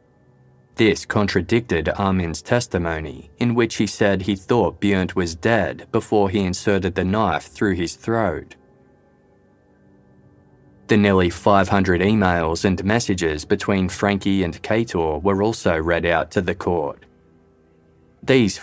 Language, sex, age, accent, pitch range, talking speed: English, male, 20-39, Australian, 85-110 Hz, 130 wpm